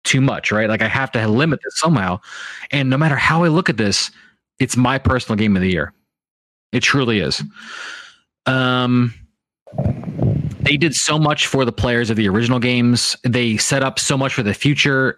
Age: 20-39